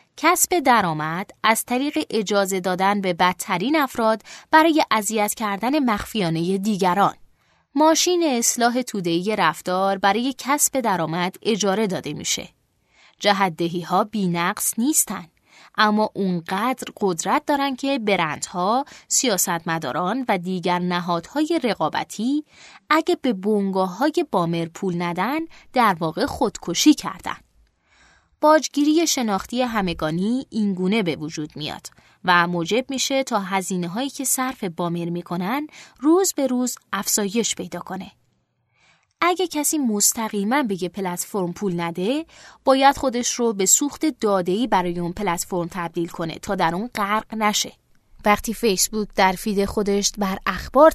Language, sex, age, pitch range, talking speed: Persian, female, 20-39, 185-260 Hz, 120 wpm